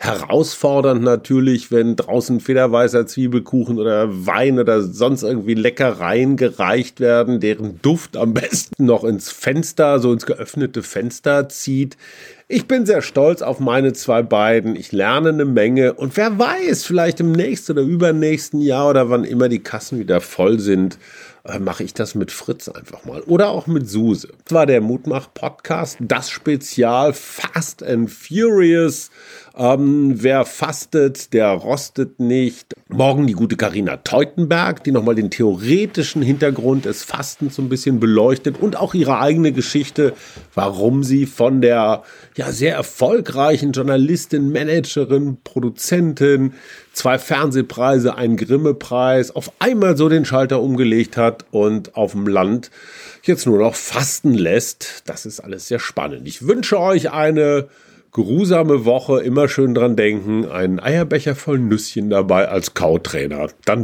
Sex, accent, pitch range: male, German, 120-155 Hz